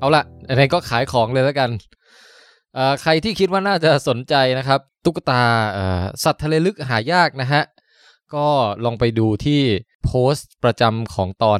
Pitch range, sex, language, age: 110-145 Hz, male, Thai, 20-39